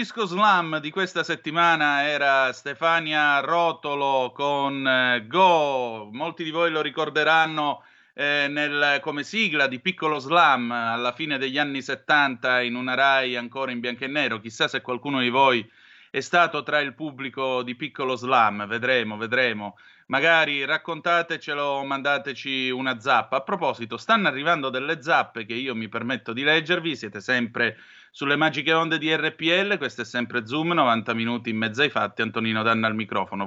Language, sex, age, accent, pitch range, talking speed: Italian, male, 30-49, native, 125-160 Hz, 160 wpm